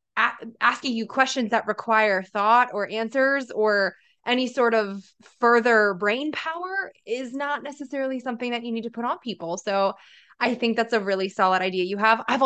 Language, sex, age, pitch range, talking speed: English, female, 20-39, 195-235 Hz, 180 wpm